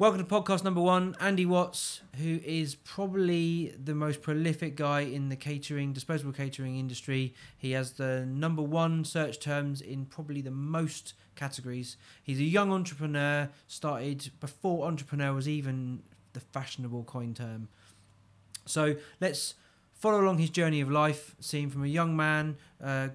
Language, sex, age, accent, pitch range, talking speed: English, male, 30-49, British, 130-155 Hz, 155 wpm